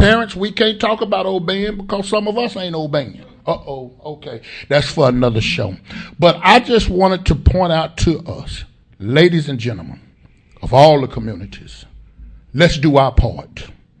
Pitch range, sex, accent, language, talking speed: 100-150 Hz, male, American, English, 165 wpm